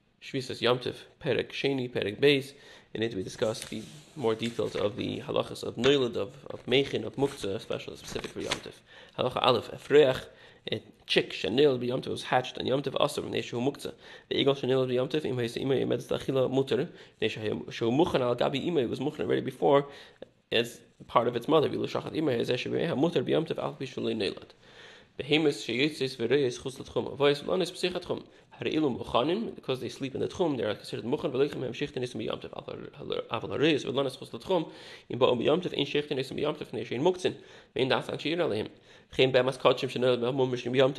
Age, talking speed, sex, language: 30-49, 140 wpm, male, English